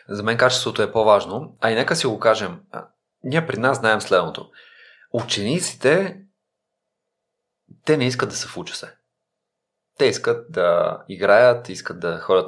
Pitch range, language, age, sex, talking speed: 95-130 Hz, Bulgarian, 30-49, male, 155 wpm